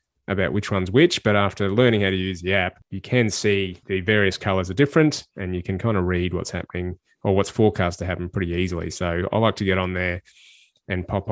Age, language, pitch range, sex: 20-39, English, 95-115 Hz, male